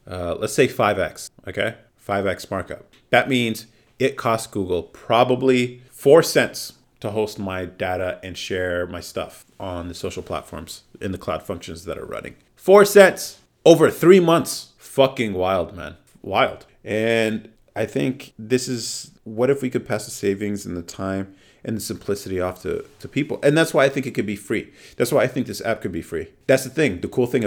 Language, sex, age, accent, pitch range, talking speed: English, male, 30-49, American, 90-115 Hz, 195 wpm